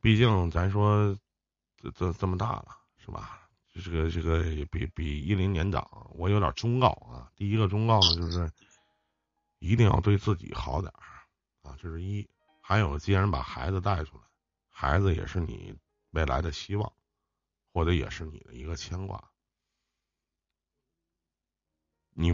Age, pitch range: 50-69, 80-115 Hz